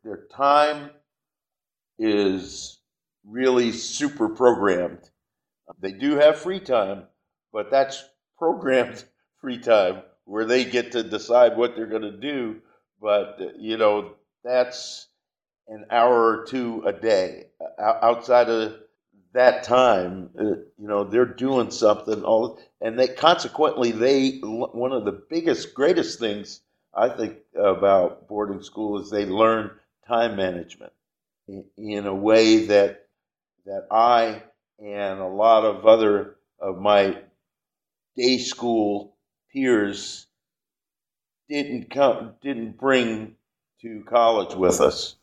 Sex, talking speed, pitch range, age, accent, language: male, 120 wpm, 105-130 Hz, 50-69, American, English